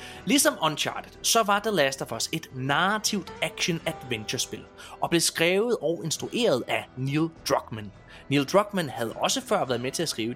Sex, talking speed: male, 170 wpm